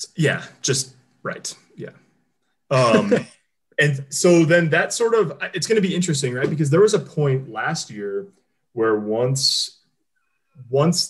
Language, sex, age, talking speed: English, male, 20-39, 145 wpm